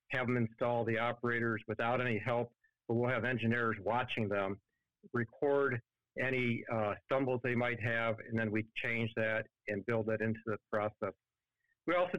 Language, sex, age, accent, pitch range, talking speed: English, male, 50-69, American, 105-125 Hz, 165 wpm